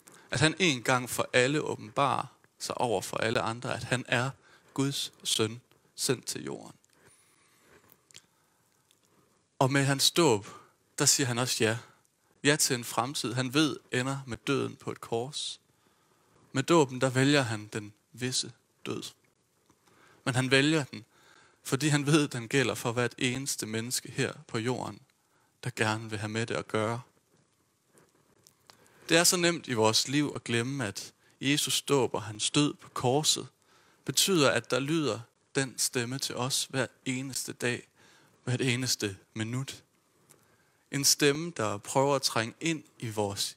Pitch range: 115-145 Hz